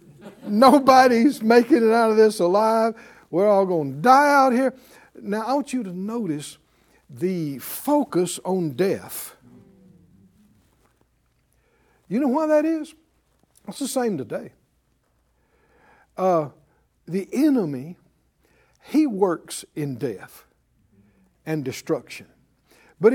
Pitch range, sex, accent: 165-260 Hz, male, American